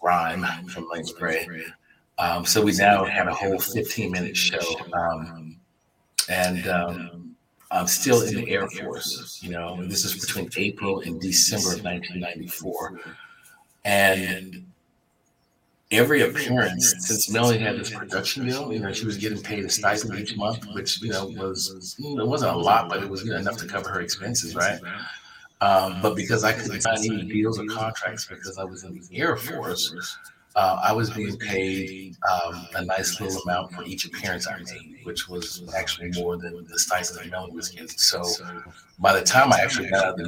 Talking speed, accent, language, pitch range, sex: 185 wpm, American, English, 90-105 Hz, male